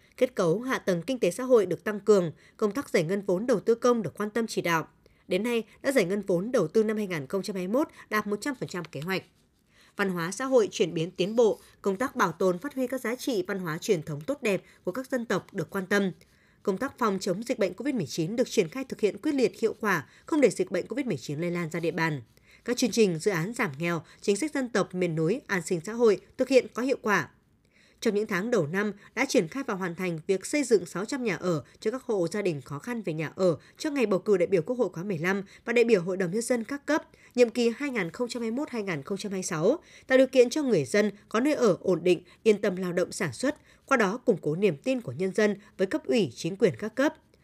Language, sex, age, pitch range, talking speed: Vietnamese, female, 20-39, 180-250 Hz, 250 wpm